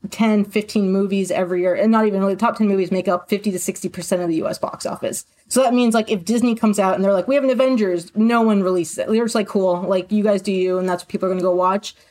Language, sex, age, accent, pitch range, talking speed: English, female, 20-39, American, 190-230 Hz, 300 wpm